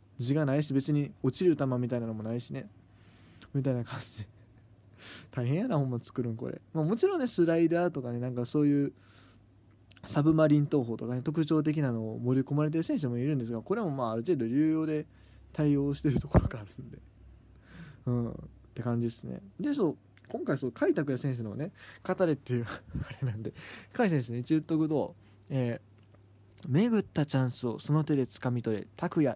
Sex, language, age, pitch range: male, Japanese, 20-39, 115-160 Hz